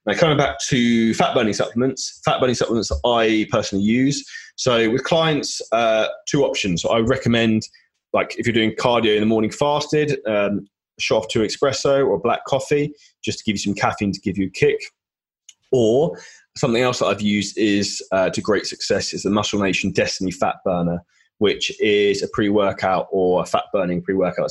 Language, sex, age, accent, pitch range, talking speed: English, male, 20-39, British, 100-135 Hz, 185 wpm